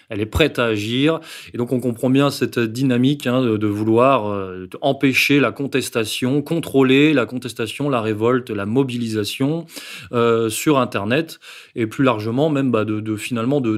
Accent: French